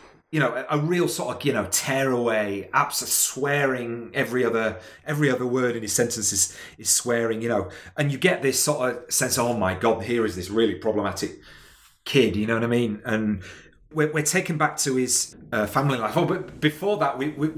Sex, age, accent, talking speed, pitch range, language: male, 30-49, British, 220 wpm, 105-135 Hz, English